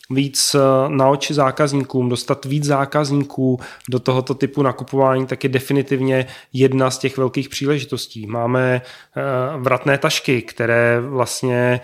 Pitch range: 130-145 Hz